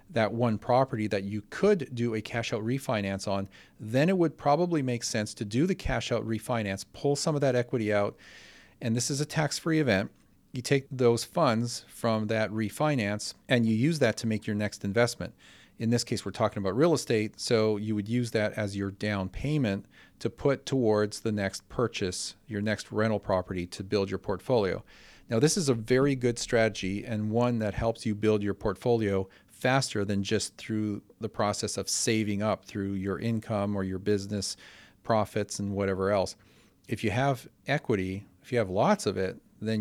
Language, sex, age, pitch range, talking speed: English, male, 40-59, 100-120 Hz, 195 wpm